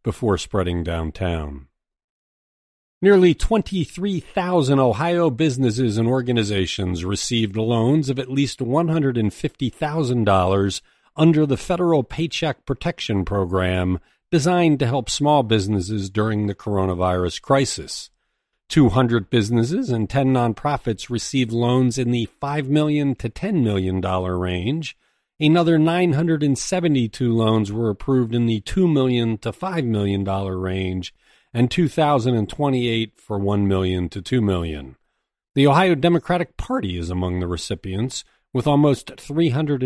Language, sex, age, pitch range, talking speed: English, male, 40-59, 100-150 Hz, 115 wpm